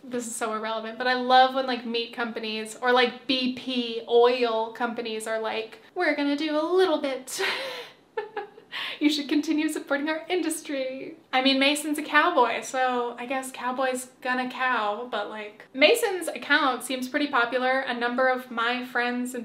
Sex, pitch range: female, 235-265 Hz